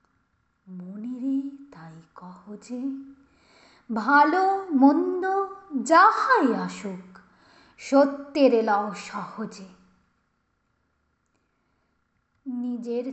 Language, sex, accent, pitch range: Bengali, female, native, 230-305 Hz